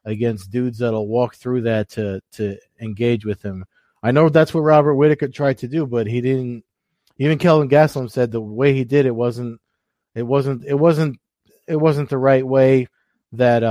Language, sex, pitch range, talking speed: English, male, 115-135 Hz, 195 wpm